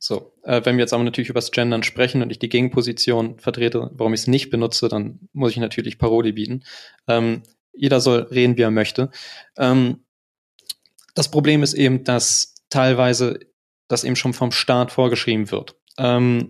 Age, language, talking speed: 20-39, German, 180 wpm